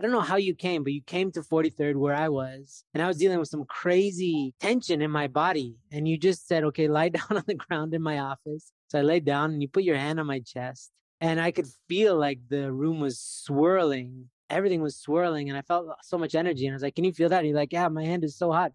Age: 20-39